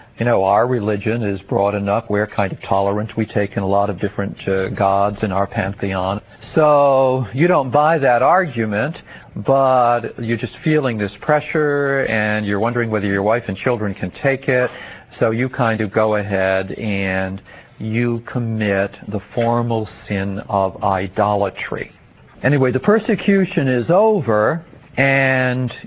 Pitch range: 105-150 Hz